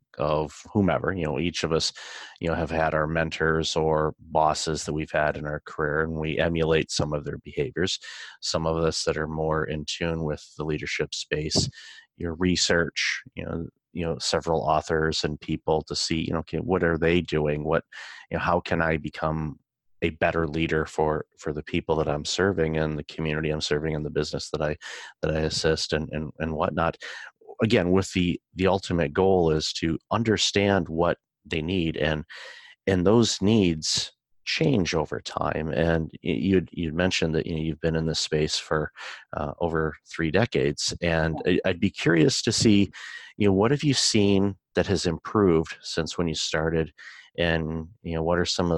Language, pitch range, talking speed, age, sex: English, 80-85 Hz, 190 wpm, 30-49, male